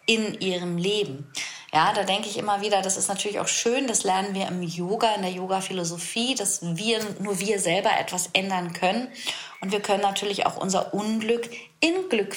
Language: German